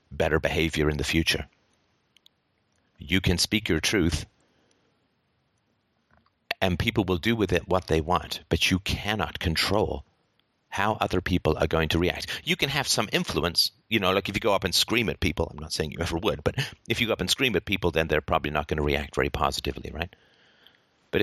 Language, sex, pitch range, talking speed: English, male, 80-100 Hz, 205 wpm